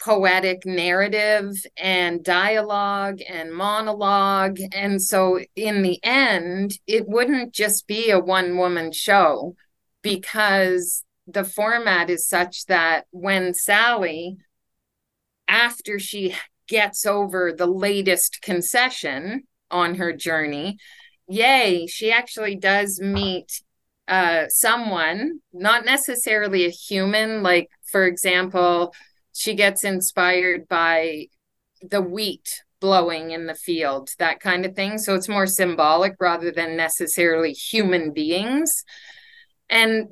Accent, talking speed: American, 110 wpm